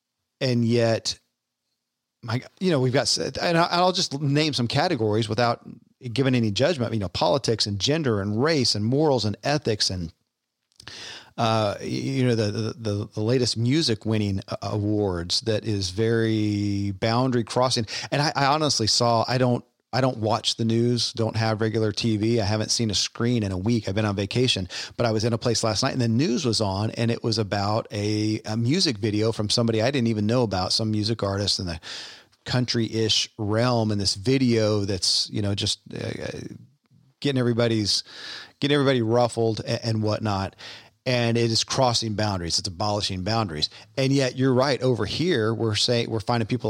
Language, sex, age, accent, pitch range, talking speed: English, male, 40-59, American, 105-125 Hz, 180 wpm